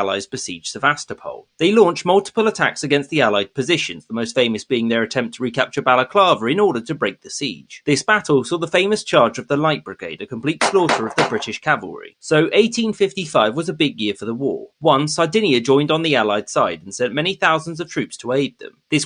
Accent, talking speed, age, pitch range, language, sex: British, 215 wpm, 30-49, 130-185 Hz, English, male